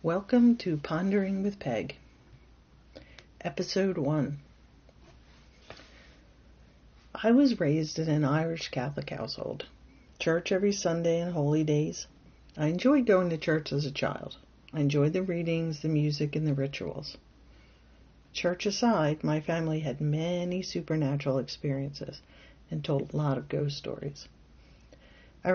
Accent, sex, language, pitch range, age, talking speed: American, female, English, 140-170 Hz, 60-79, 125 wpm